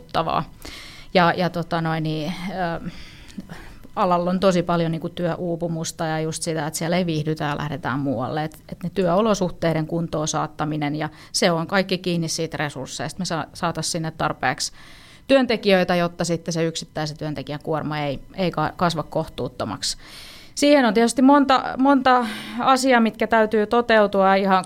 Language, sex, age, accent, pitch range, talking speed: Finnish, female, 30-49, native, 160-185 Hz, 145 wpm